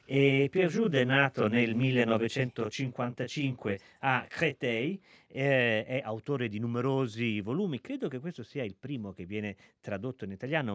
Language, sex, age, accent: Italian, male, 40-59, native